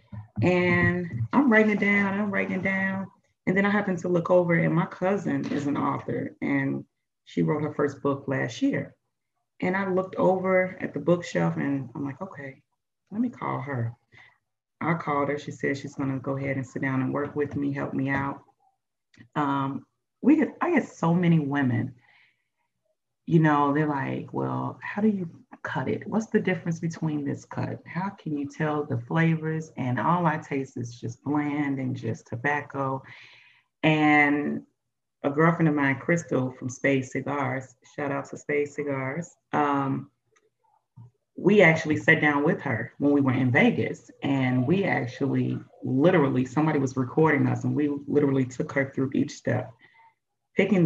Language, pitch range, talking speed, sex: English, 135-175 Hz, 175 wpm, female